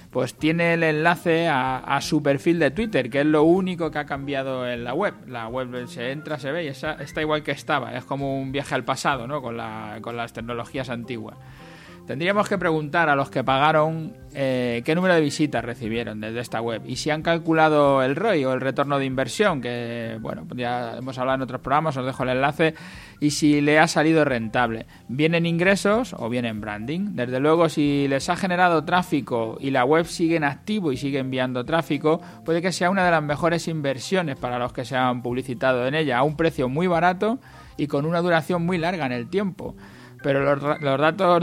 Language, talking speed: Spanish, 210 wpm